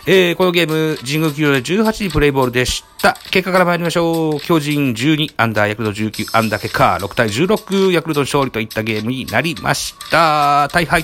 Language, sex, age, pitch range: Japanese, male, 40-59, 125-175 Hz